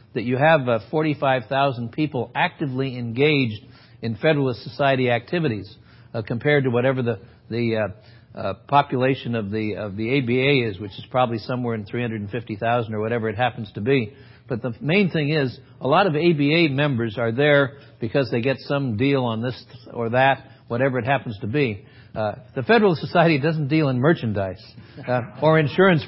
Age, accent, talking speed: 60-79, American, 175 wpm